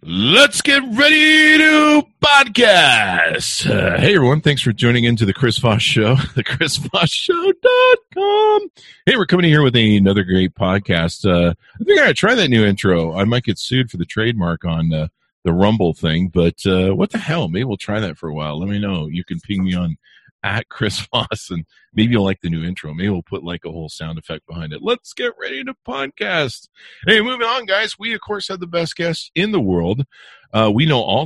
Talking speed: 215 wpm